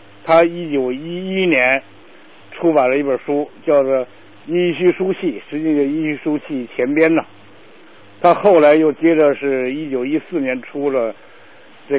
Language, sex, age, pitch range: Chinese, male, 50-69, 140-185 Hz